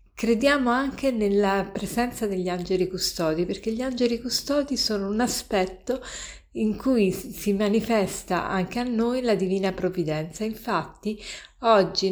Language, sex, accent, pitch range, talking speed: Italian, female, native, 180-215 Hz, 130 wpm